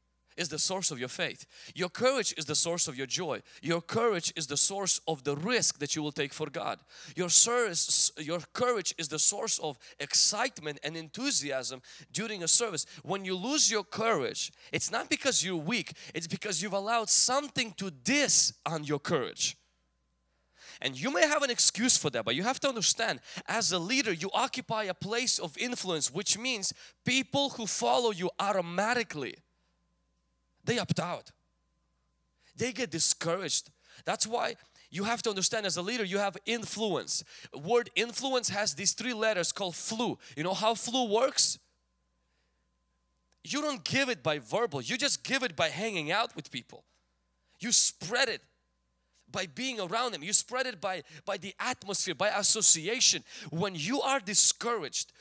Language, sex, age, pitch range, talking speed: English, male, 20-39, 150-235 Hz, 170 wpm